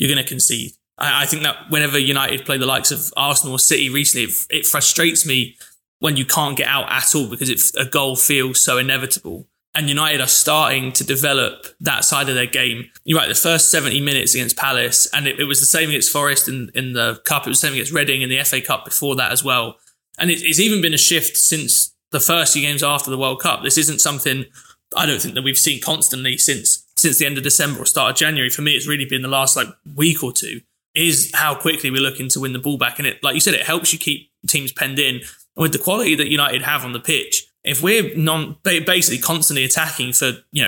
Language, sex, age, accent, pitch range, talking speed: English, male, 20-39, British, 135-160 Hz, 240 wpm